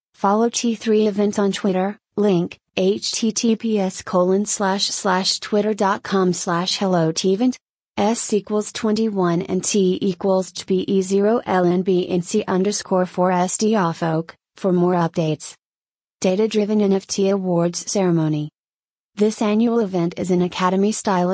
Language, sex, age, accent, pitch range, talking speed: English, female, 30-49, American, 175-205 Hz, 95 wpm